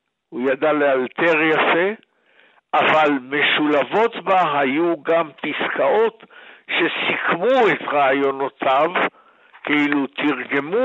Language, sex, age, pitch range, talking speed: Hebrew, male, 60-79, 140-180 Hz, 85 wpm